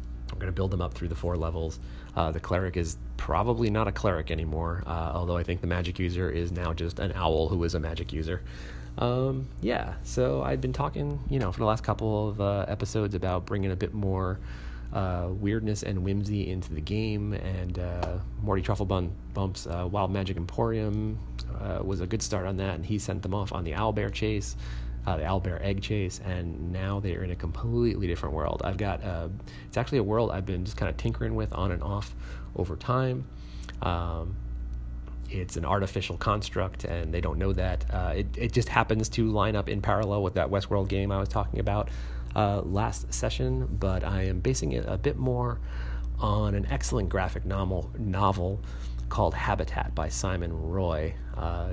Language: English